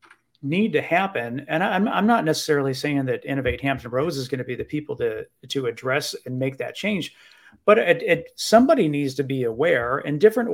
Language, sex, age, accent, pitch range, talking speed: English, male, 40-59, American, 130-150 Hz, 205 wpm